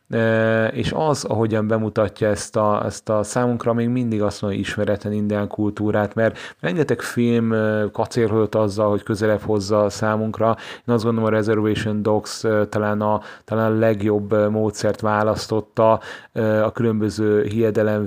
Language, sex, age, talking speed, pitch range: Hungarian, male, 30-49, 135 wpm, 105-110 Hz